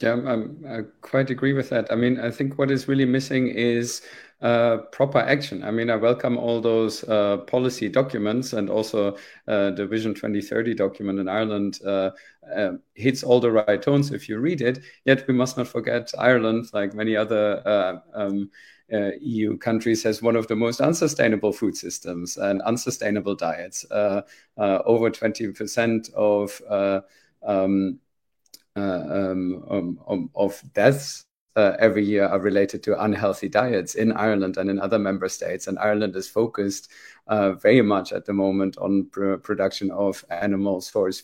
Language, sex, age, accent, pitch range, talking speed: English, male, 50-69, German, 100-115 Hz, 165 wpm